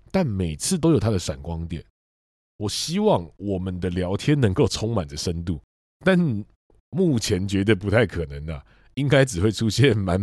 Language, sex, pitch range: Chinese, male, 85-130 Hz